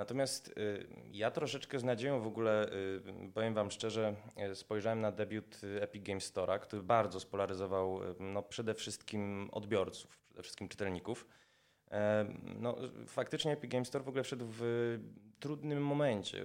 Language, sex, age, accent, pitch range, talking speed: Polish, male, 20-39, native, 100-120 Hz, 130 wpm